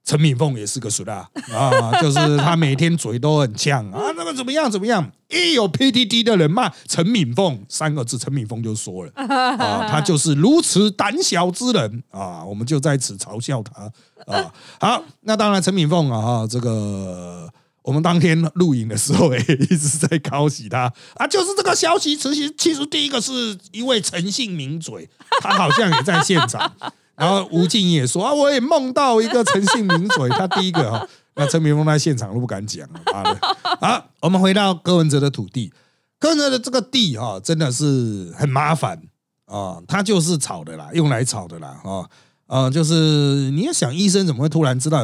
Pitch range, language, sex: 135-200 Hz, Chinese, male